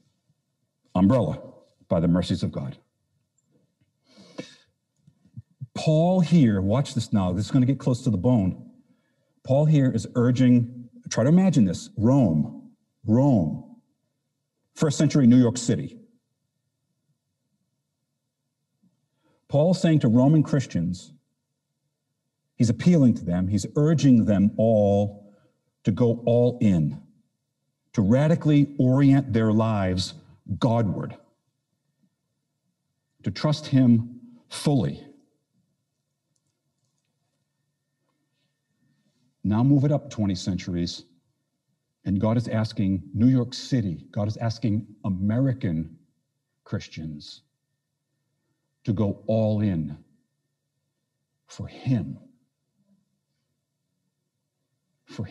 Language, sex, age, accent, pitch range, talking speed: English, male, 50-69, American, 110-145 Hz, 95 wpm